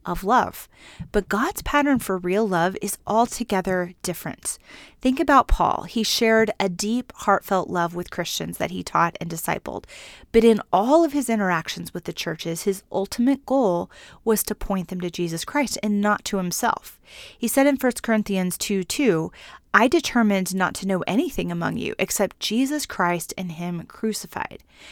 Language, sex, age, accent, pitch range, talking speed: English, female, 30-49, American, 180-230 Hz, 170 wpm